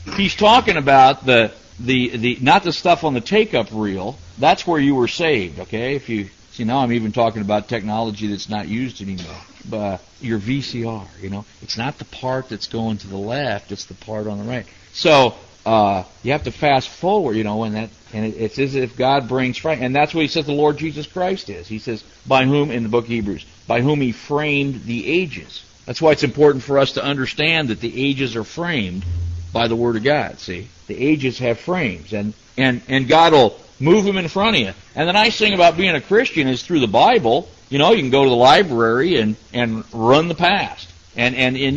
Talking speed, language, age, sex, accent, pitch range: 230 wpm, English, 50-69, male, American, 105-150 Hz